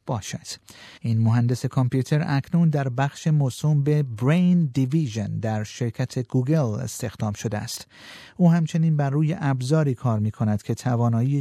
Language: Persian